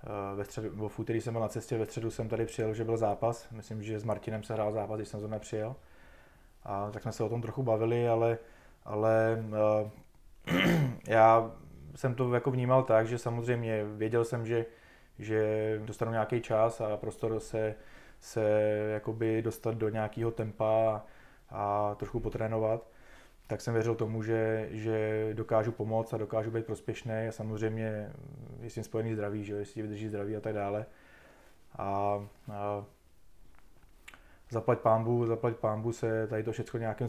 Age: 20-39